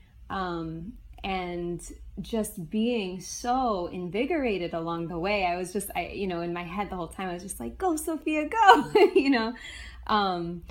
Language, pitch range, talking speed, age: English, 175-215 Hz, 175 wpm, 20-39